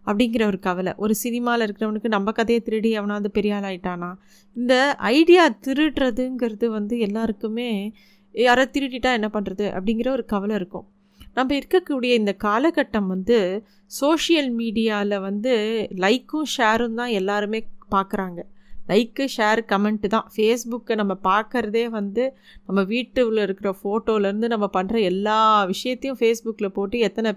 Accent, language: native, Tamil